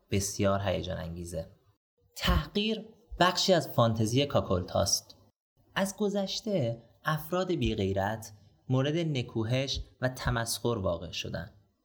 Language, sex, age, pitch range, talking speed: Persian, male, 30-49, 100-130 Hz, 90 wpm